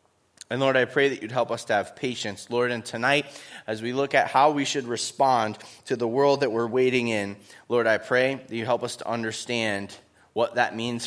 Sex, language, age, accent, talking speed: male, English, 20-39, American, 220 wpm